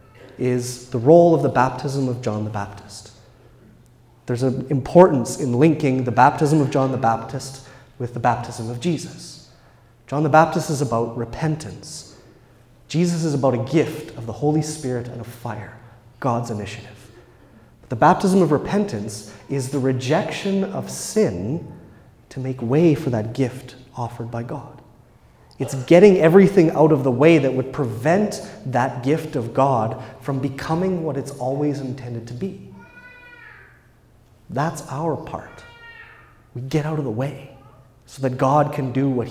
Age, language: 30-49, English